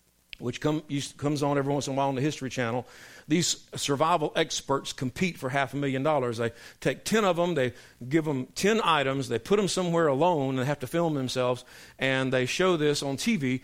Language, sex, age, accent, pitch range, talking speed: English, male, 50-69, American, 125-180 Hz, 215 wpm